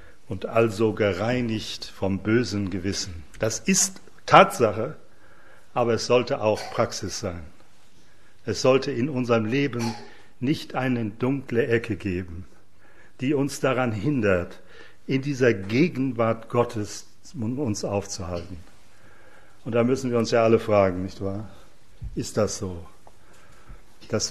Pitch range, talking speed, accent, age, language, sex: 100-125 Hz, 120 wpm, German, 60-79, English, male